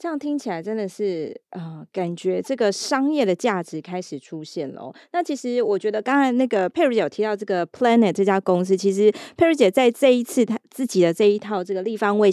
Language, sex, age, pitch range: Chinese, female, 20-39, 180-235 Hz